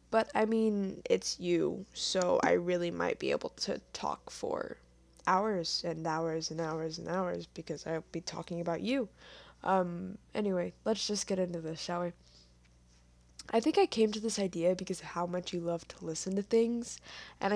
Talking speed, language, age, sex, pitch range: 185 wpm, English, 10-29, female, 175-205 Hz